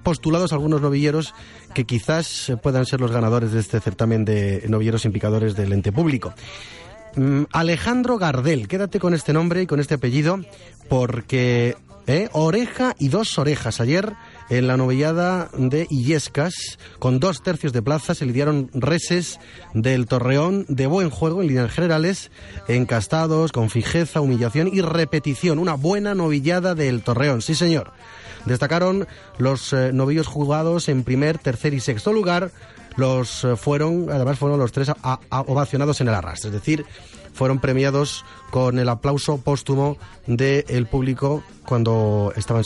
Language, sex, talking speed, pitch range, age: Spanish, male, 150 wpm, 120-160 Hz, 30-49